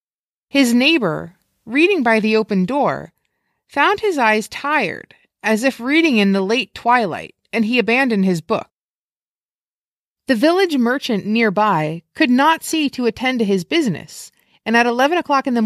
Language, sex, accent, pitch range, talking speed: English, female, American, 195-260 Hz, 155 wpm